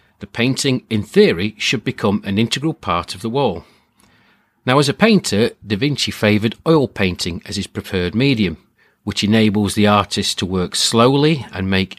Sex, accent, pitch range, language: male, British, 100-135 Hz, English